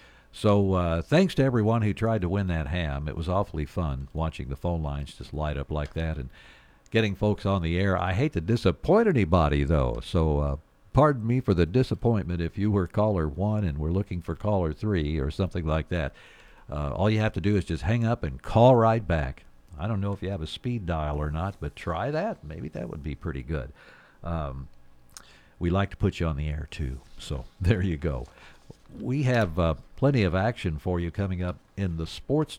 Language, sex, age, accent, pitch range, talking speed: English, male, 60-79, American, 80-105 Hz, 220 wpm